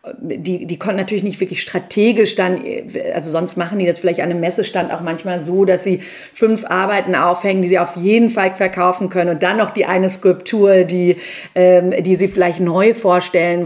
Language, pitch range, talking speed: German, 180-215 Hz, 200 wpm